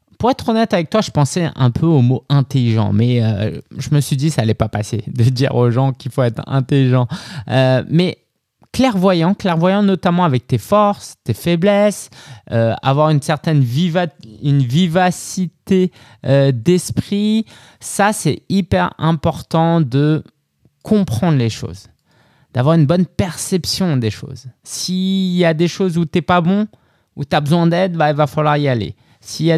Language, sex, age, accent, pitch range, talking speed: French, male, 20-39, French, 125-175 Hz, 185 wpm